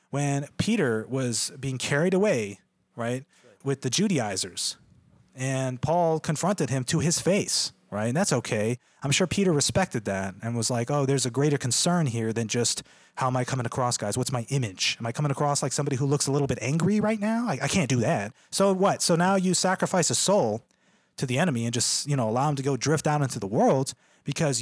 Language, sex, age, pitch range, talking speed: English, male, 30-49, 130-170 Hz, 220 wpm